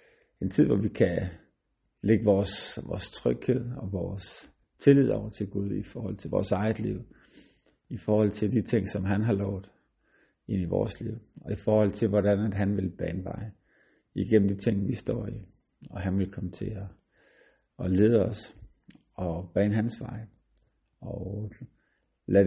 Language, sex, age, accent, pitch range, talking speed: Danish, male, 50-69, native, 95-110 Hz, 170 wpm